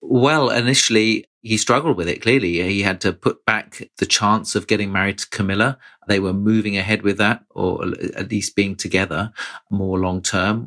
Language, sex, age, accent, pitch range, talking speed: English, male, 40-59, British, 90-105 Hz, 185 wpm